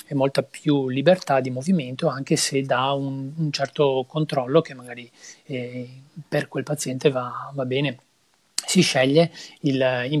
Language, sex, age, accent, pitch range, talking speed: Italian, male, 30-49, native, 130-150 Hz, 140 wpm